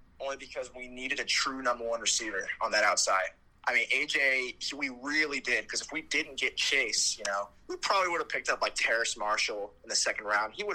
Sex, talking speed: male, 230 wpm